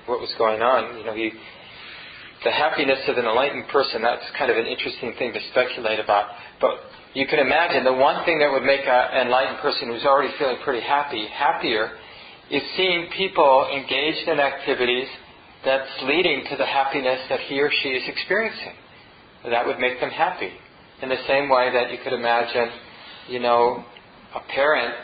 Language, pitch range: English, 120-145 Hz